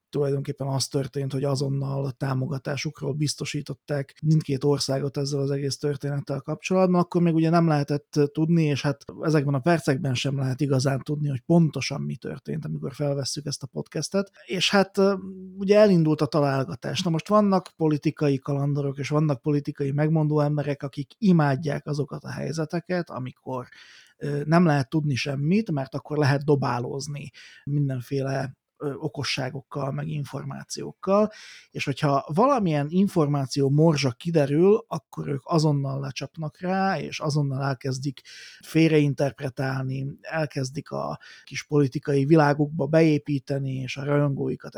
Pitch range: 140-155 Hz